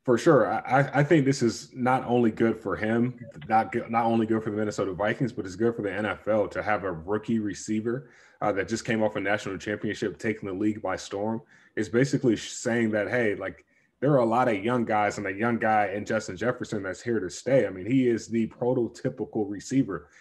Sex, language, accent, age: male, English, American, 20-39